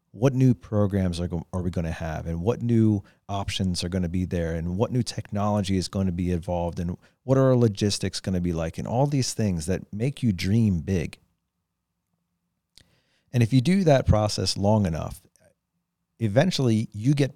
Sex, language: male, English